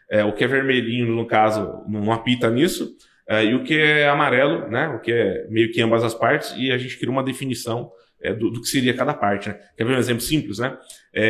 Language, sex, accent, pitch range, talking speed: Portuguese, male, Brazilian, 110-135 Hz, 245 wpm